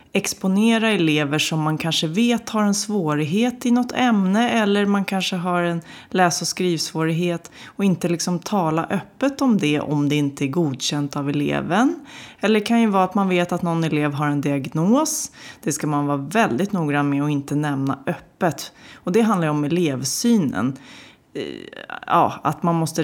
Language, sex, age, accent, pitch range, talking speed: Swedish, female, 30-49, native, 145-195 Hz, 180 wpm